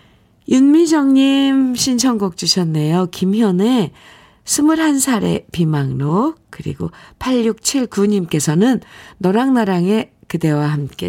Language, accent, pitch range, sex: Korean, native, 160-225 Hz, female